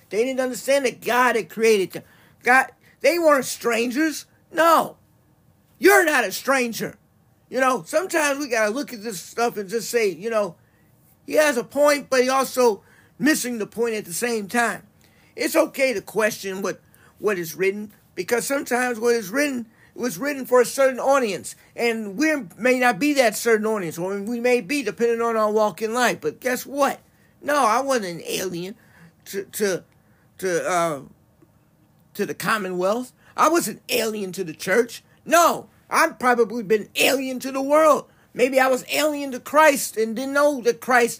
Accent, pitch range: American, 210-265 Hz